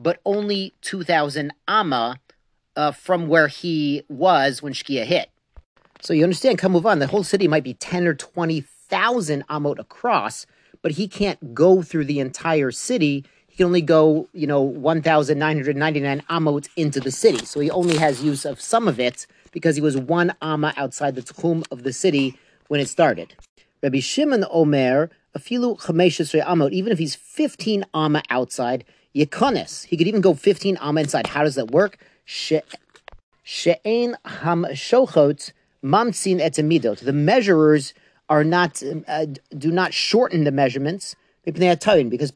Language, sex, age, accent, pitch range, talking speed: English, male, 40-59, American, 145-180 Hz, 150 wpm